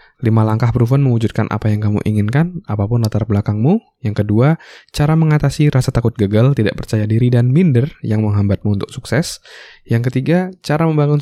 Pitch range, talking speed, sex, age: 100-130 Hz, 165 wpm, male, 20-39